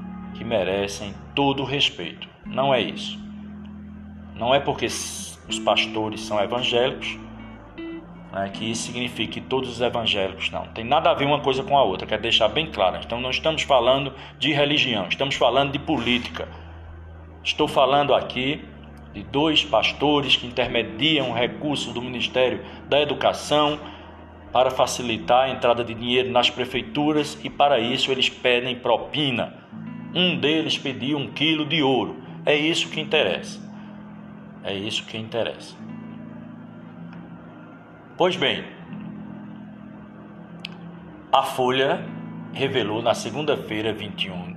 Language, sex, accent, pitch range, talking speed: Portuguese, male, Brazilian, 110-175 Hz, 130 wpm